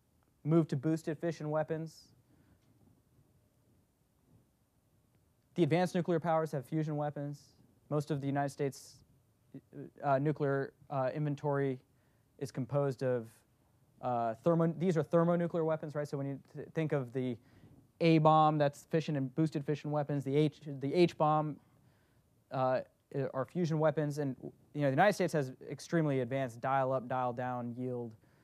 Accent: American